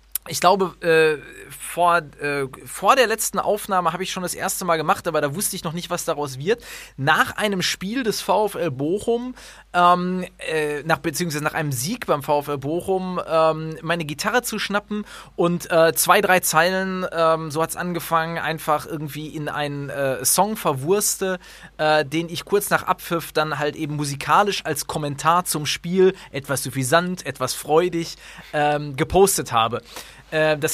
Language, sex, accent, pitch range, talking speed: German, male, German, 150-185 Hz, 160 wpm